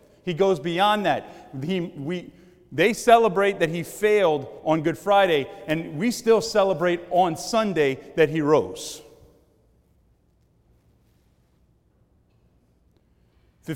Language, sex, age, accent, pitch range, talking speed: English, male, 30-49, American, 155-210 Hz, 95 wpm